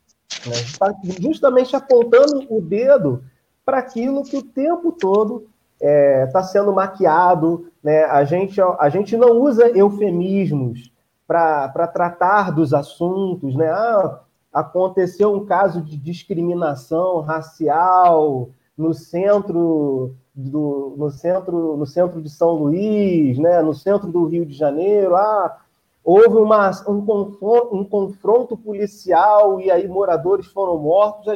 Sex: male